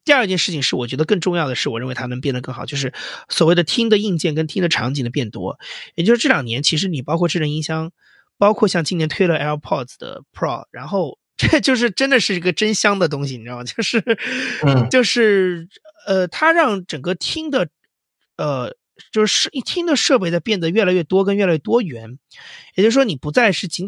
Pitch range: 150-220 Hz